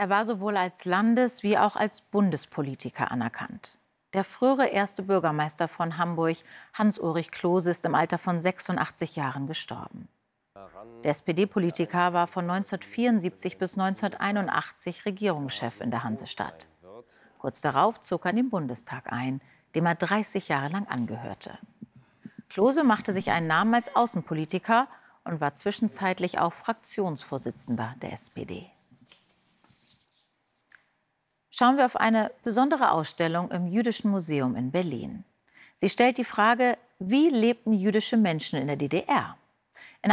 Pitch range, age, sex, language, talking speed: 165-225 Hz, 40-59, female, German, 130 wpm